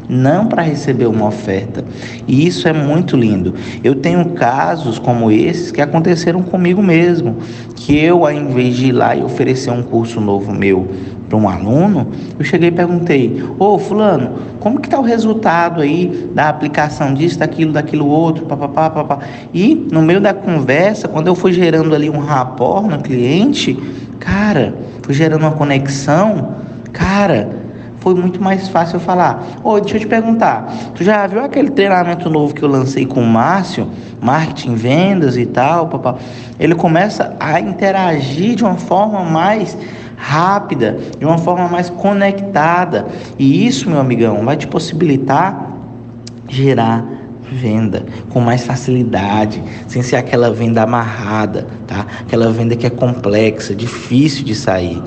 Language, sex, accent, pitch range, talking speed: Portuguese, male, Brazilian, 120-175 Hz, 155 wpm